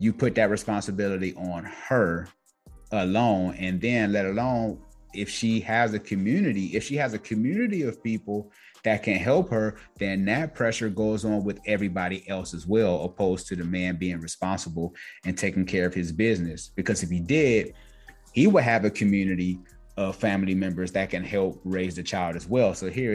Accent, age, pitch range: American, 30-49, 90-105 Hz